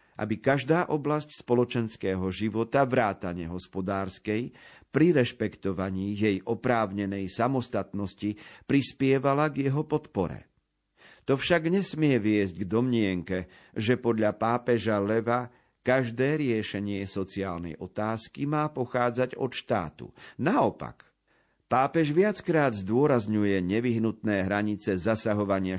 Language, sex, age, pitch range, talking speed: Slovak, male, 50-69, 100-135 Hz, 95 wpm